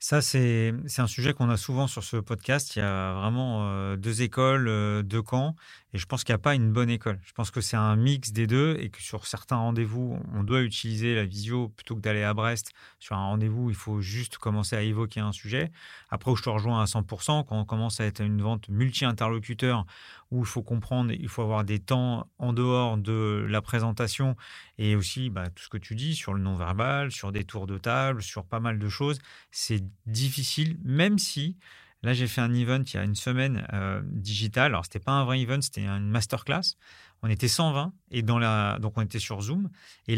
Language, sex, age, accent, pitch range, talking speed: French, male, 30-49, French, 110-135 Hz, 225 wpm